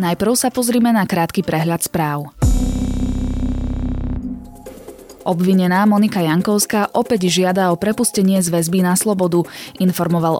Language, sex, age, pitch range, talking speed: Slovak, female, 20-39, 165-205 Hz, 110 wpm